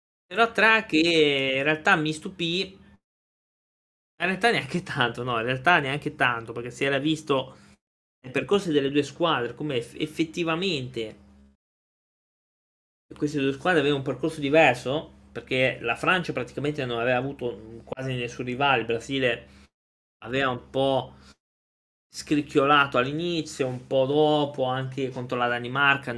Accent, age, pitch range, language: native, 20-39, 110-135 Hz, Italian